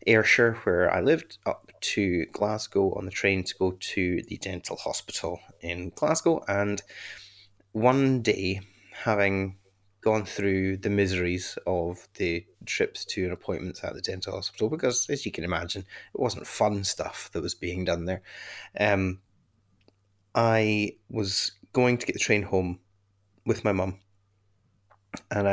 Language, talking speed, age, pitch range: English, 145 wpm, 30-49, 95-105 Hz